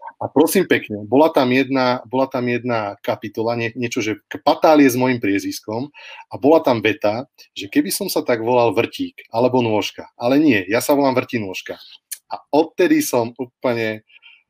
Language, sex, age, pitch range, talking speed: Slovak, male, 30-49, 115-145 Hz, 170 wpm